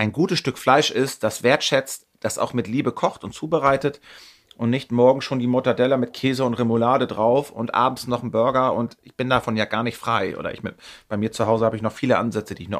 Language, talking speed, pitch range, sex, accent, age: German, 250 wpm, 115-135 Hz, male, German, 40-59